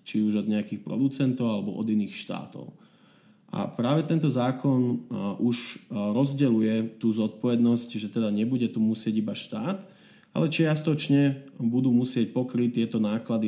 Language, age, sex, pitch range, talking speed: Slovak, 30-49, male, 105-125 Hz, 140 wpm